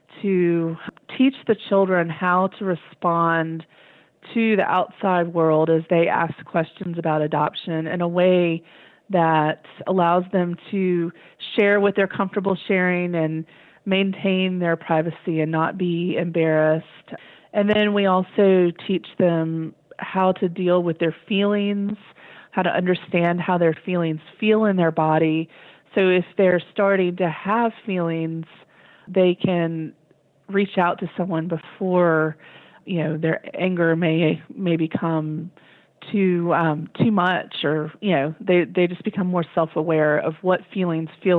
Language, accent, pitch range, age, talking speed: English, American, 160-190 Hz, 30-49, 140 wpm